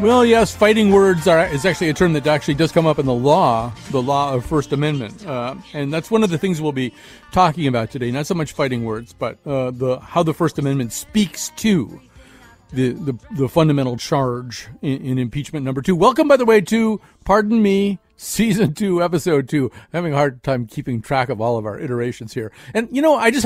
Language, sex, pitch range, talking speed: English, male, 135-190 Hz, 225 wpm